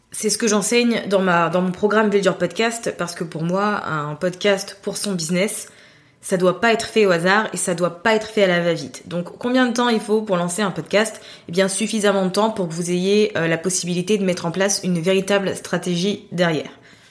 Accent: French